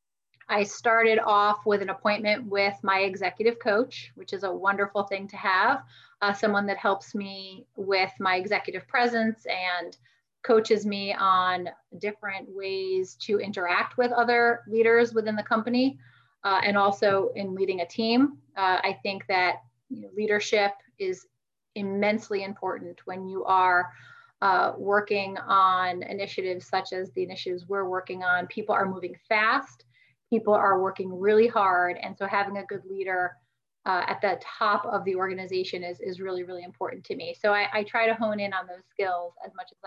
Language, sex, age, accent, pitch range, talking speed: English, female, 30-49, American, 185-225 Hz, 165 wpm